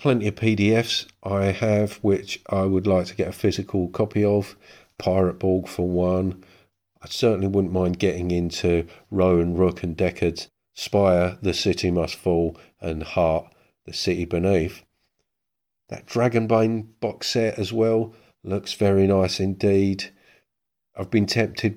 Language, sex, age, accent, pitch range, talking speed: English, male, 40-59, British, 85-105 Hz, 145 wpm